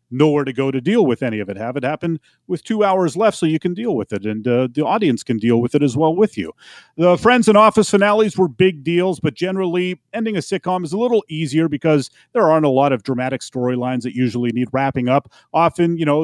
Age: 30-49